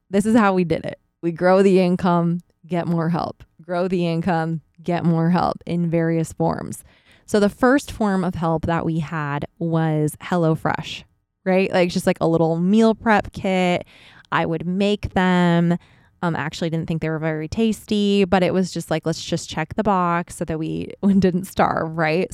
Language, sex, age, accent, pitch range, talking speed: English, female, 20-39, American, 160-190 Hz, 190 wpm